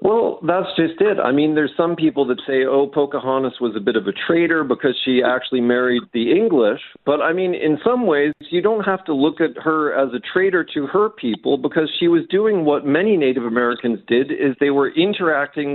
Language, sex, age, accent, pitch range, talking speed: English, male, 50-69, American, 125-175 Hz, 215 wpm